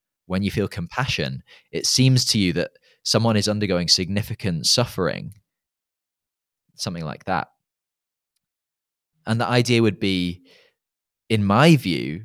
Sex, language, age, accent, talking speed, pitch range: male, English, 20-39, British, 120 wpm, 85-120 Hz